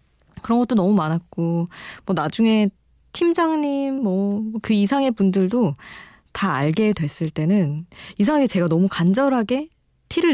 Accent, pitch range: native, 160-225 Hz